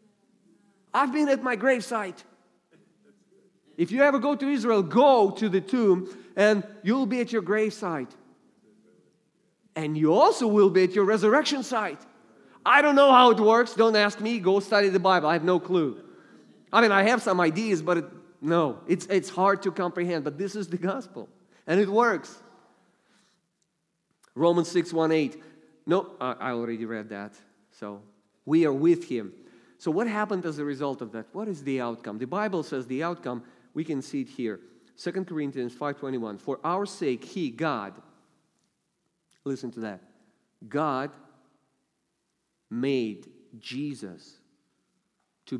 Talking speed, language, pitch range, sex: 155 wpm, English, 135-205 Hz, male